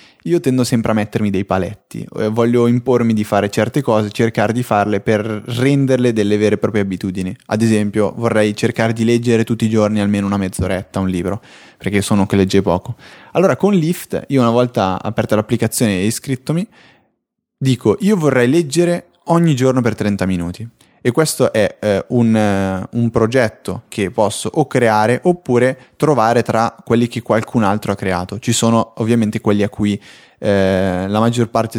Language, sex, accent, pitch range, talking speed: Italian, male, native, 100-125 Hz, 170 wpm